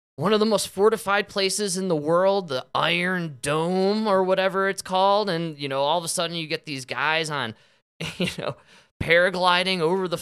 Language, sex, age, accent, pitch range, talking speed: English, male, 20-39, American, 130-195 Hz, 195 wpm